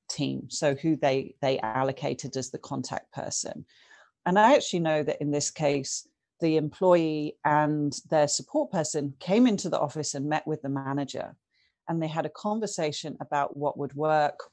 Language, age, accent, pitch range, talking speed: English, 40-59, British, 145-185 Hz, 175 wpm